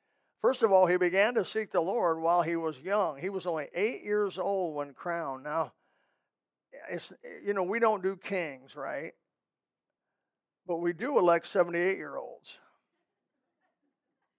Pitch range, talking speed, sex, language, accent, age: 160-200 Hz, 140 wpm, male, English, American, 50-69